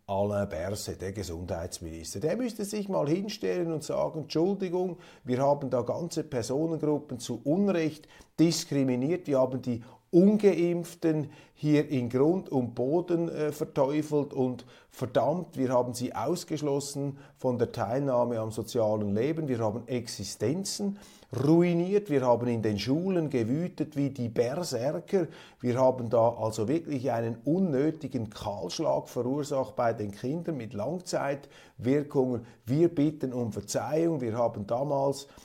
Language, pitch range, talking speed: German, 115-155 Hz, 130 wpm